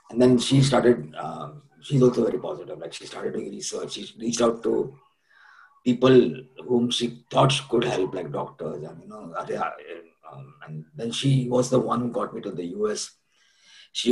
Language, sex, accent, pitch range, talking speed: English, male, Indian, 120-140 Hz, 180 wpm